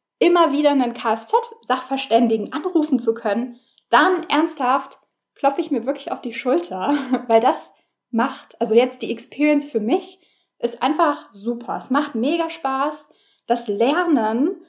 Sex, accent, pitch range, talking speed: female, German, 230-305 Hz, 140 wpm